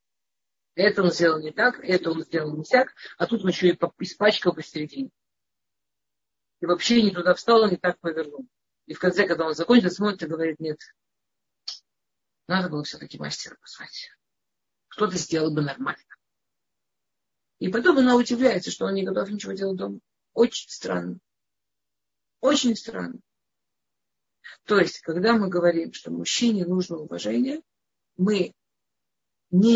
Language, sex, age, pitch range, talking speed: Russian, female, 40-59, 160-220 Hz, 140 wpm